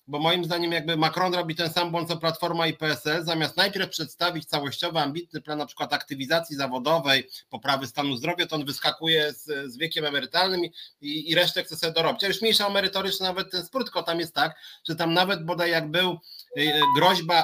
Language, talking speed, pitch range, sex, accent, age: Polish, 195 wpm, 145-180 Hz, male, native, 30-49